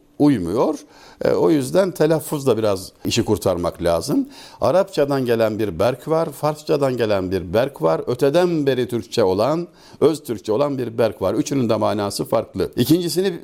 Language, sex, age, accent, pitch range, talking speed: Turkish, male, 60-79, native, 105-150 Hz, 150 wpm